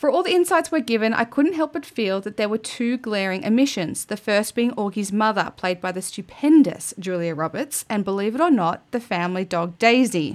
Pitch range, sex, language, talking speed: 180-260 Hz, female, English, 215 wpm